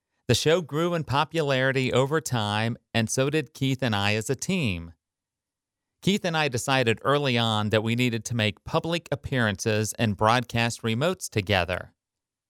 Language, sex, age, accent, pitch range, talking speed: English, male, 40-59, American, 110-140 Hz, 160 wpm